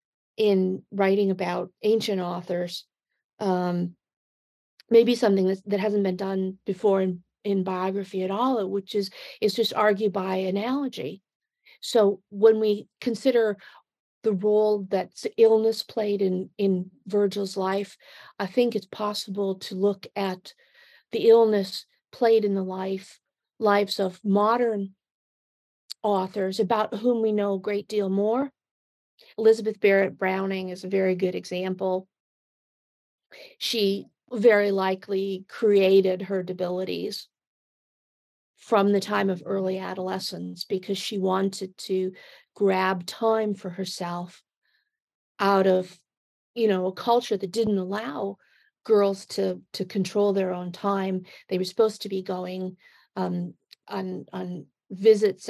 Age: 50-69